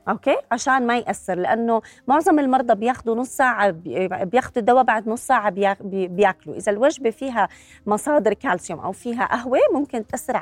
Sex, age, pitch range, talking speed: female, 30-49, 200-250 Hz, 150 wpm